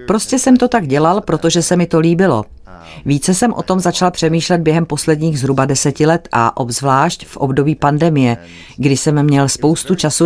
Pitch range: 130-170 Hz